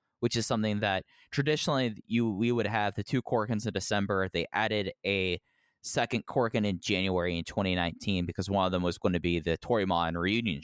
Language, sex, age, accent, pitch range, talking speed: English, male, 10-29, American, 95-120 Hz, 190 wpm